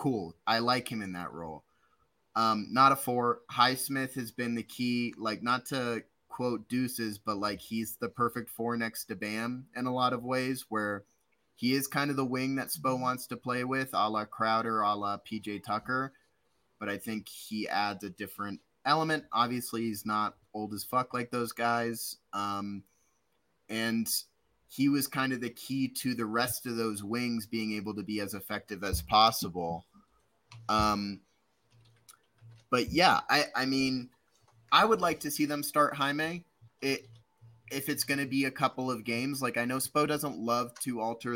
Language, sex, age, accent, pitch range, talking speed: English, male, 30-49, American, 110-130 Hz, 185 wpm